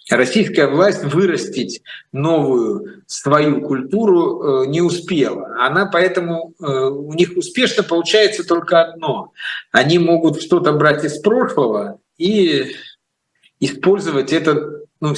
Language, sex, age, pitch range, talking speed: Russian, male, 50-69, 130-185 Hz, 105 wpm